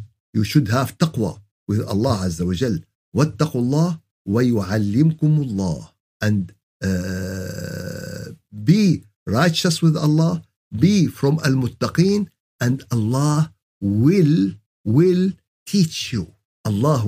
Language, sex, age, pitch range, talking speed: Arabic, male, 50-69, 110-170 Hz, 100 wpm